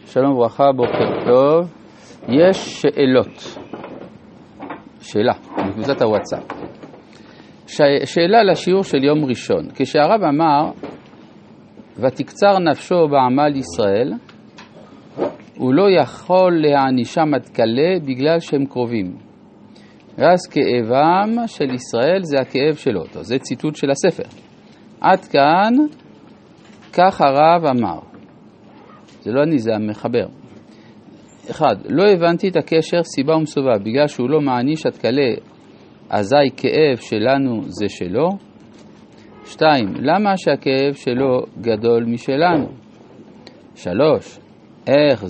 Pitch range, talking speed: 125-170 Hz, 100 wpm